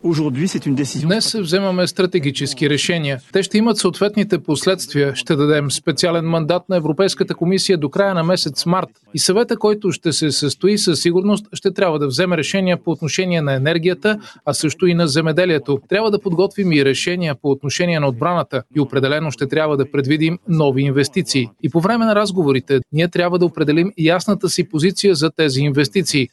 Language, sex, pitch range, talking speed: Bulgarian, male, 160-210 Hz, 170 wpm